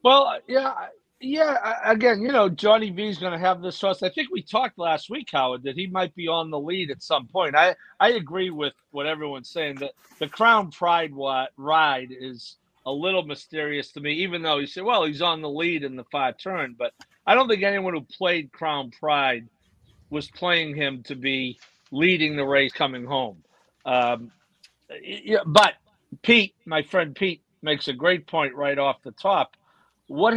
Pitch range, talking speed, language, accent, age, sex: 140-190 Hz, 190 wpm, English, American, 50-69, male